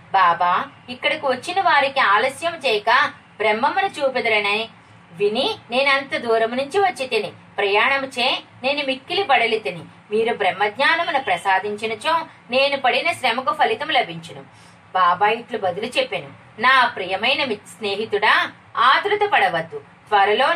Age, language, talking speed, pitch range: 30-49, Telugu, 100 wpm, 210-325 Hz